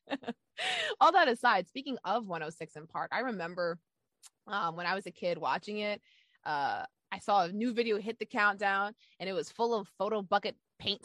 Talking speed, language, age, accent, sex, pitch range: 190 wpm, English, 20-39, American, female, 175-245 Hz